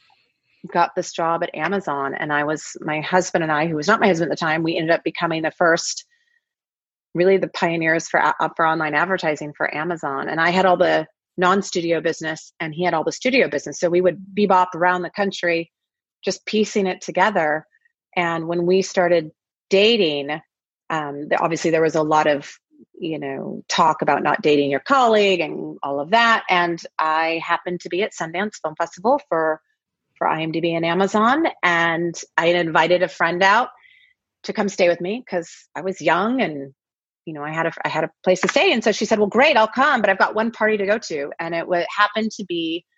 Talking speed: 205 wpm